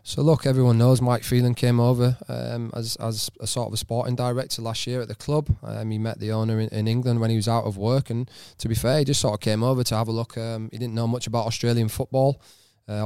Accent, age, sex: British, 20-39, male